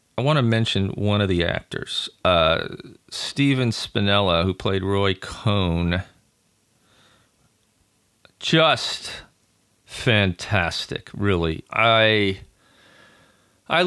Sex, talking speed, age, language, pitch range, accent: male, 85 wpm, 40-59, English, 95-120 Hz, American